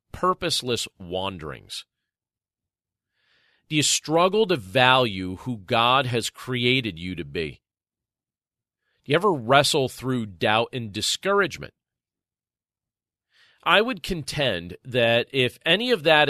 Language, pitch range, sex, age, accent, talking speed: English, 115-175 Hz, male, 40-59, American, 110 wpm